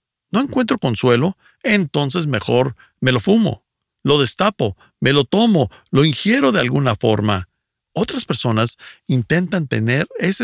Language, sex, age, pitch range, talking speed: Spanish, male, 50-69, 115-160 Hz, 130 wpm